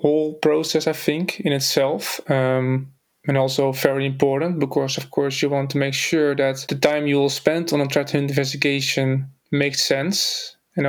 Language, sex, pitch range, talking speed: English, male, 140-150 Hz, 180 wpm